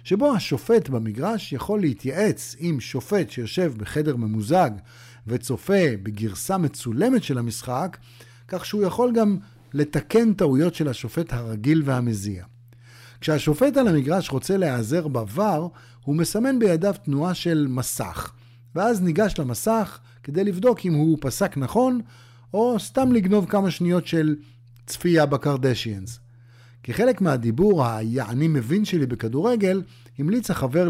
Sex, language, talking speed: male, Hebrew, 120 wpm